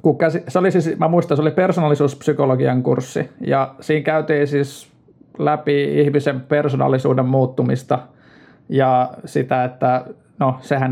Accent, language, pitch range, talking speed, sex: native, Finnish, 130-155 Hz, 120 wpm, male